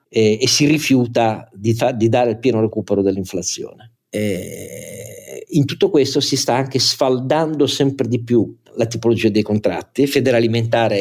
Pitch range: 105-135 Hz